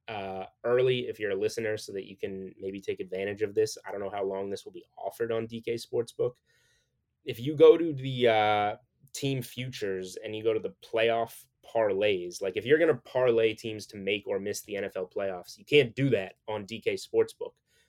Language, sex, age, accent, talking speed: English, male, 20-39, American, 210 wpm